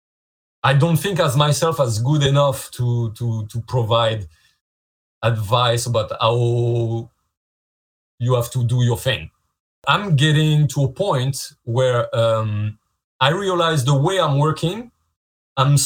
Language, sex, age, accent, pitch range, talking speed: English, male, 30-49, French, 110-145 Hz, 130 wpm